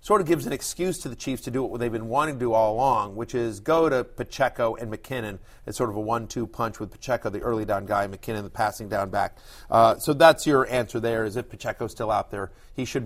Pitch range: 115-150 Hz